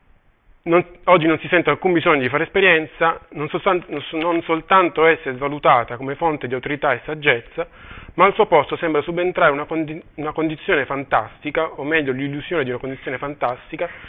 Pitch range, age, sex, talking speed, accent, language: 140-180 Hz, 30-49, male, 175 wpm, native, Italian